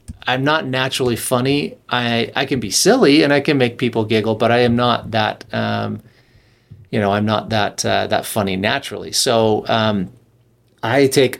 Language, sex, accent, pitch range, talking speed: English, male, American, 110-130 Hz, 180 wpm